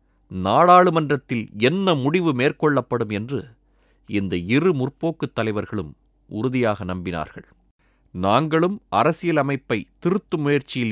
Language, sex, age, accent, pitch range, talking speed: Tamil, male, 30-49, native, 100-145 Hz, 90 wpm